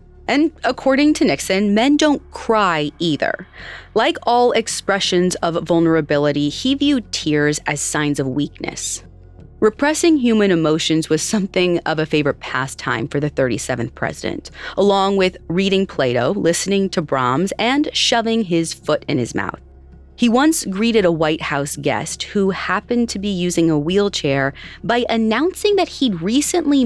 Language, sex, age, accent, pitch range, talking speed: English, female, 30-49, American, 155-235 Hz, 145 wpm